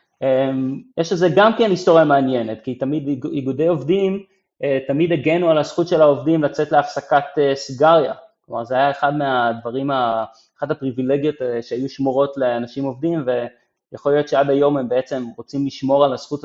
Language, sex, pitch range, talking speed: Hebrew, male, 125-165 Hz, 165 wpm